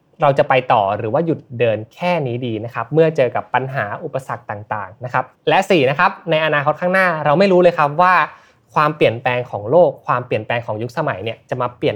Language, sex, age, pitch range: Thai, male, 20-39, 125-165 Hz